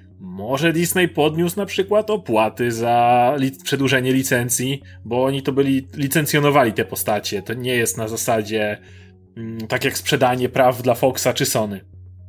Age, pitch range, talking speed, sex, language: 30-49, 120-155 Hz, 140 wpm, male, Polish